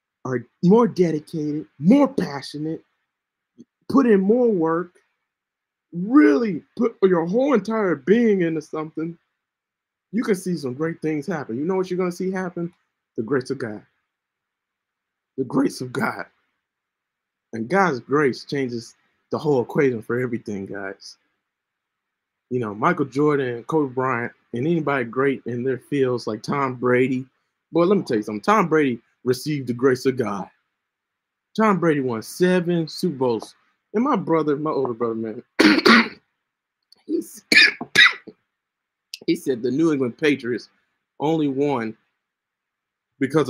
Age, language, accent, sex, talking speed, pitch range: 20-39, English, American, male, 140 wpm, 130-175 Hz